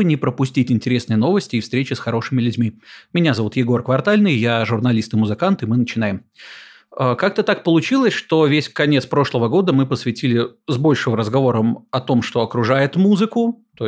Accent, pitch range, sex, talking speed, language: native, 115-160 Hz, male, 170 wpm, Russian